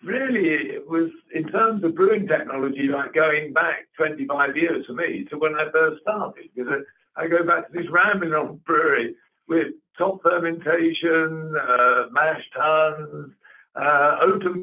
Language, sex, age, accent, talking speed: English, male, 60-79, British, 155 wpm